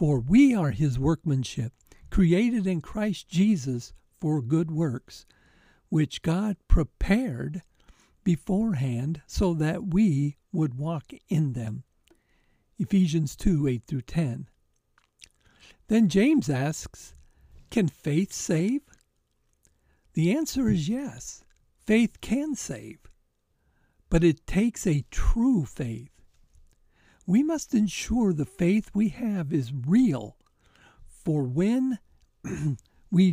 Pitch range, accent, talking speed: 140-210 Hz, American, 105 wpm